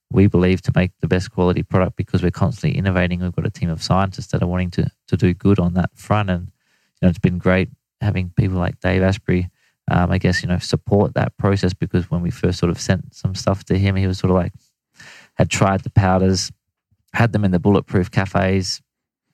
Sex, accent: male, Australian